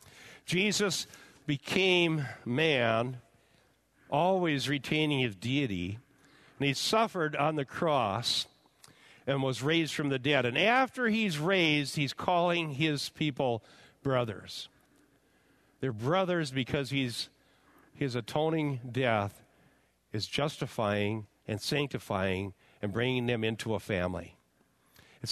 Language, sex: English, male